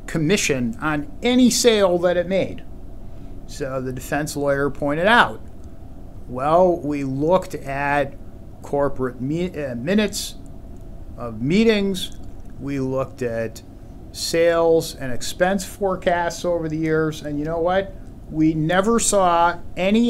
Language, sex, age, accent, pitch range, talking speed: English, male, 50-69, American, 120-190 Hz, 120 wpm